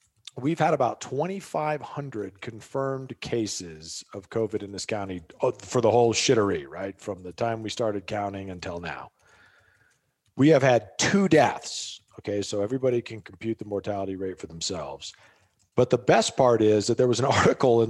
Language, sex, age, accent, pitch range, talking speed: English, male, 40-59, American, 105-155 Hz, 170 wpm